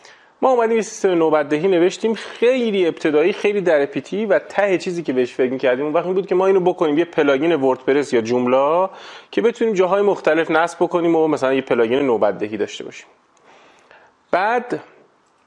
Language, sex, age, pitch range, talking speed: Persian, male, 30-49, 125-180 Hz, 165 wpm